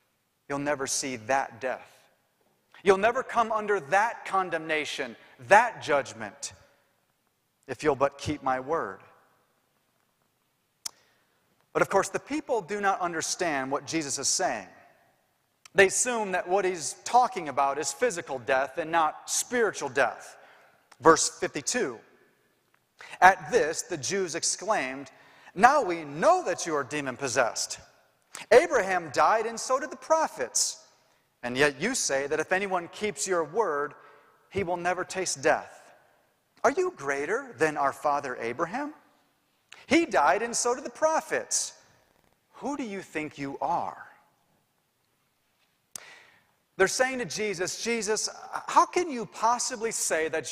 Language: English